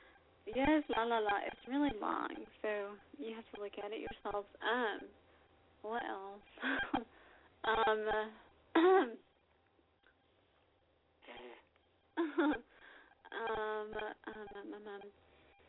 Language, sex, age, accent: English, female, 20-39, American